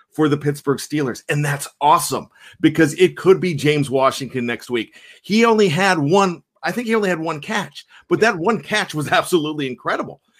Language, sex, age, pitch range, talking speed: English, male, 40-59, 140-190 Hz, 190 wpm